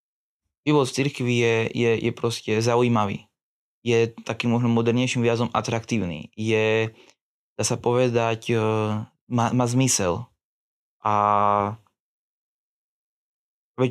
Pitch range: 110-125 Hz